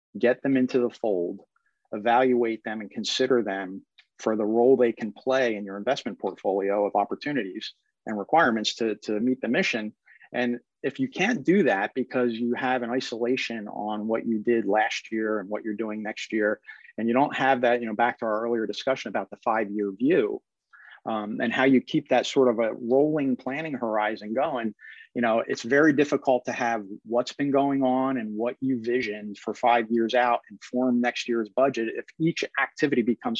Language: English